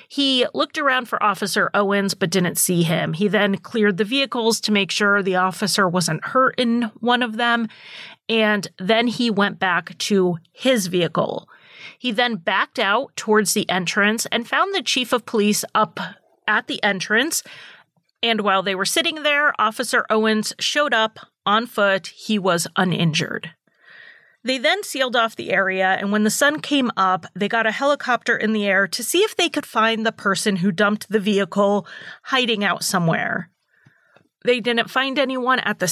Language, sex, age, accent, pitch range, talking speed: English, female, 30-49, American, 195-245 Hz, 175 wpm